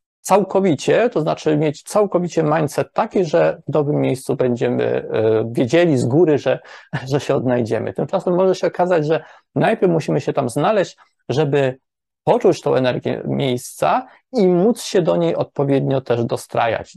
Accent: native